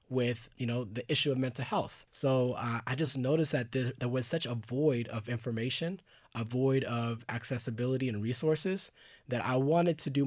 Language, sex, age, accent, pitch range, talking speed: English, male, 20-39, American, 120-145 Hz, 195 wpm